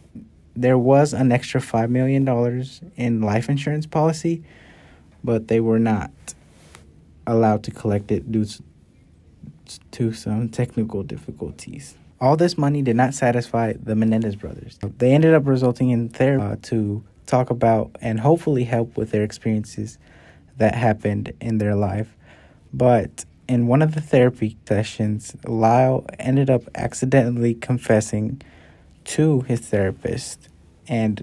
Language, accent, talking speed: English, American, 135 wpm